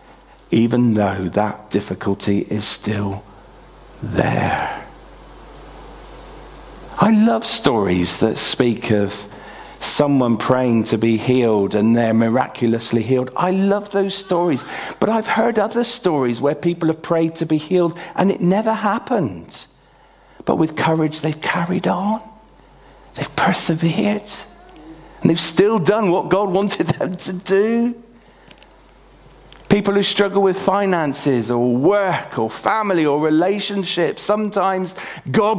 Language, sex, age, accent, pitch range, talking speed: English, male, 40-59, British, 120-195 Hz, 125 wpm